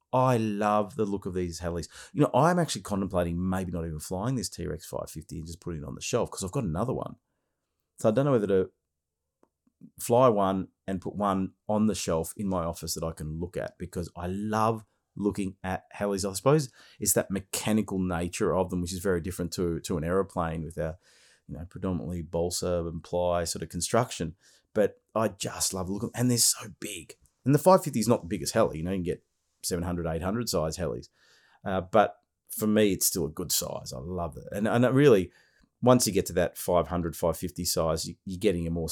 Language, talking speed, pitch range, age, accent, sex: English, 215 wpm, 85-105 Hz, 30-49, Australian, male